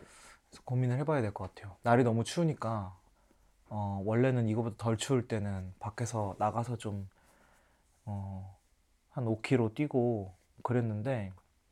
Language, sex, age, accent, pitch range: Korean, male, 20-39, native, 100-130 Hz